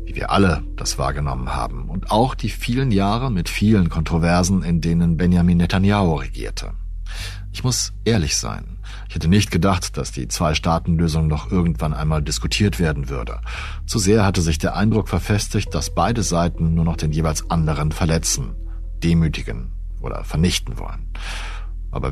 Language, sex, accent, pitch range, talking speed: German, male, German, 80-95 Hz, 150 wpm